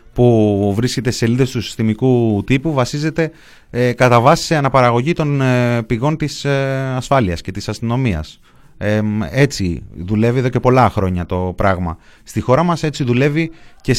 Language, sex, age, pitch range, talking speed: Greek, male, 30-49, 95-125 Hz, 160 wpm